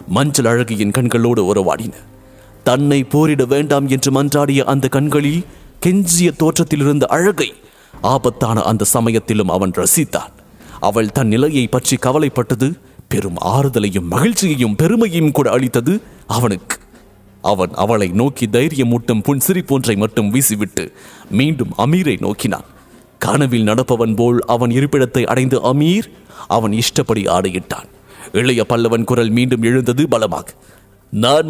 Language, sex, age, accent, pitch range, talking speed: English, male, 30-49, Indian, 120-150 Hz, 105 wpm